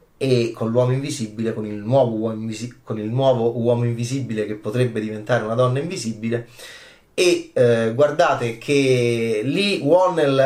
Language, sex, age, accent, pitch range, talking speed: Italian, male, 30-49, native, 115-135 Hz, 125 wpm